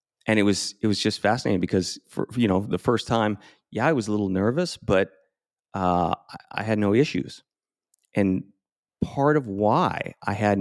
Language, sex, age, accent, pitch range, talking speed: English, male, 30-49, American, 95-115 Hz, 180 wpm